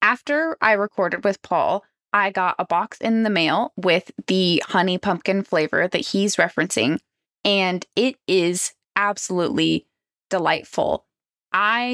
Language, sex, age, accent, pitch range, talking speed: English, female, 20-39, American, 185-240 Hz, 130 wpm